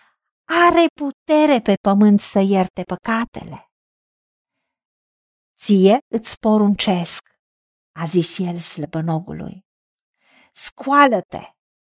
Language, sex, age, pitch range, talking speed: Romanian, female, 50-69, 205-275 Hz, 75 wpm